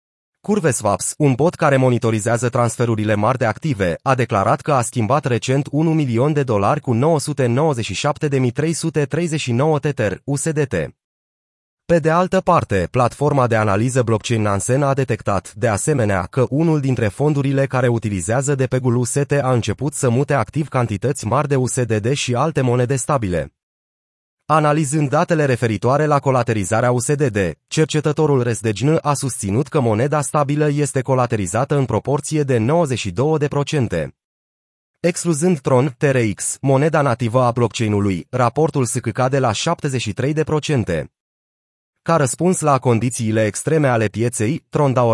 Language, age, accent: Romanian, 30-49, native